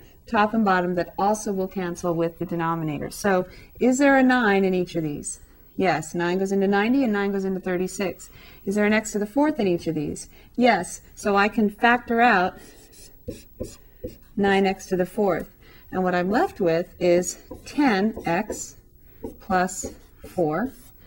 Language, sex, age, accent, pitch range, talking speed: English, female, 40-59, American, 180-235 Hz, 170 wpm